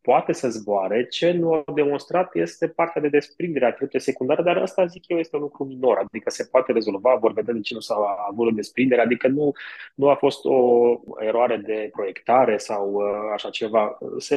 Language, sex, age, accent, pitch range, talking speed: Romanian, male, 20-39, native, 115-155 Hz, 195 wpm